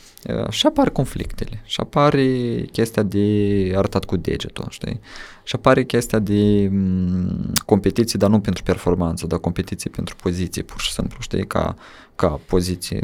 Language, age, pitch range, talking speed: Romanian, 20-39, 90-105 Hz, 145 wpm